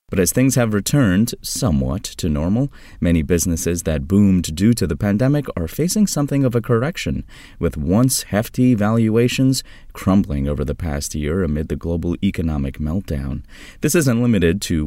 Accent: American